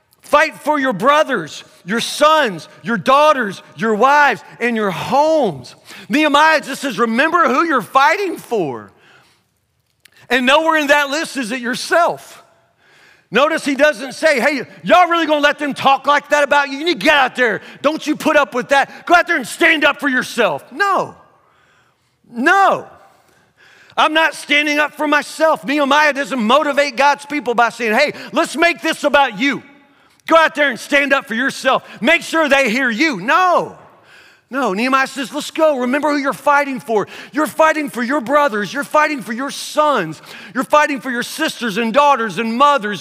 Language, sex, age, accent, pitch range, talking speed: English, male, 40-59, American, 230-300 Hz, 180 wpm